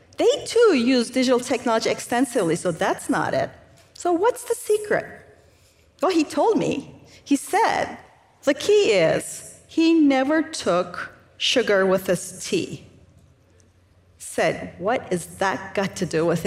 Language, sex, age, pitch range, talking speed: English, female, 40-59, 205-335 Hz, 140 wpm